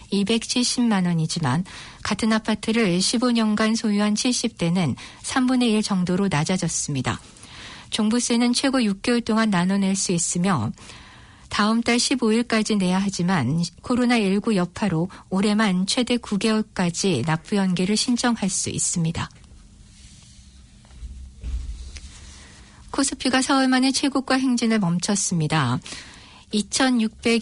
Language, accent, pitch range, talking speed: English, Korean, 180-230 Hz, 85 wpm